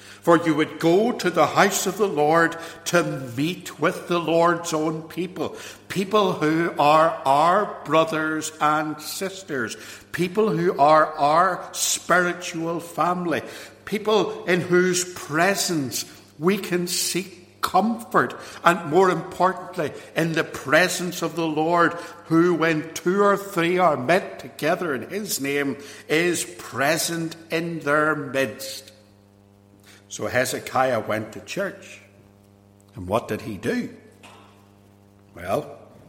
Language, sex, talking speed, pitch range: English, male, 125 wpm, 100-165 Hz